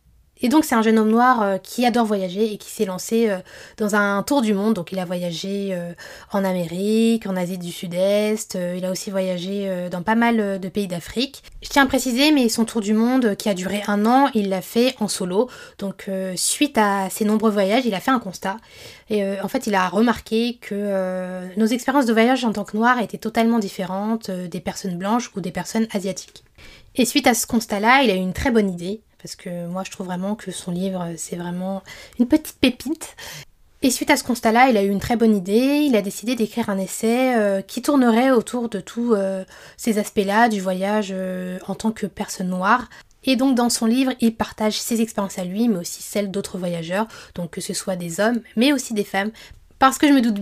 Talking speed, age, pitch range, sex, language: 220 wpm, 10-29, 190-235 Hz, female, French